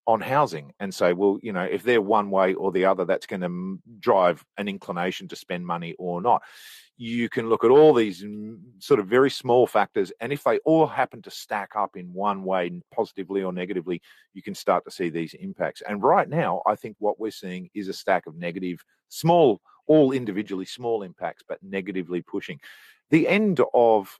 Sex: male